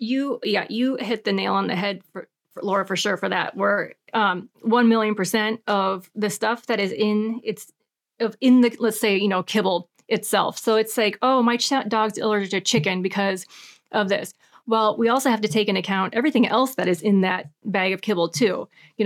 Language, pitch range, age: English, 195-235 Hz, 30-49